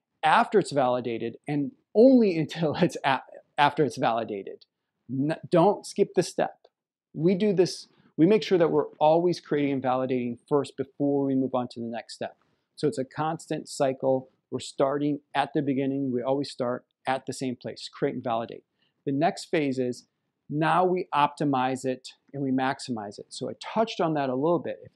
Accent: American